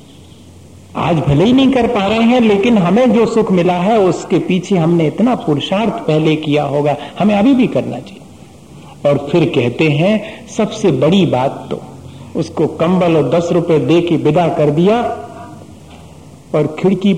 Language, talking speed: Hindi, 165 wpm